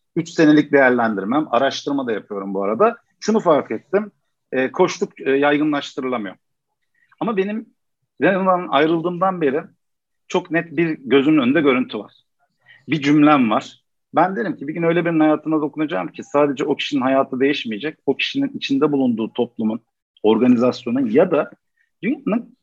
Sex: male